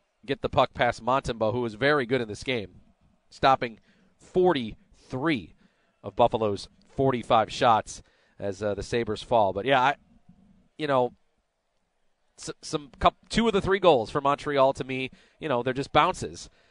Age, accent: 30-49, American